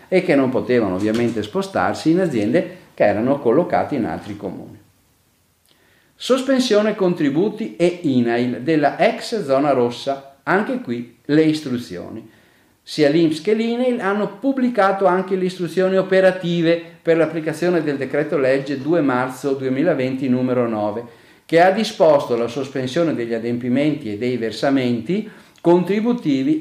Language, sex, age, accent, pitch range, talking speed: Italian, male, 40-59, native, 125-195 Hz, 130 wpm